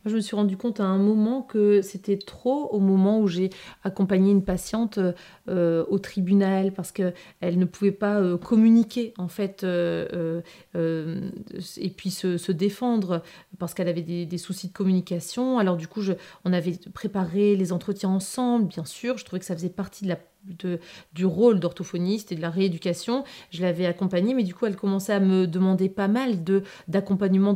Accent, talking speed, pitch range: French, 190 wpm, 180-210 Hz